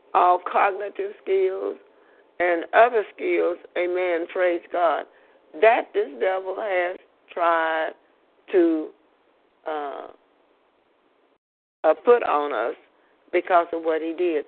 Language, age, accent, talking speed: English, 50-69, American, 105 wpm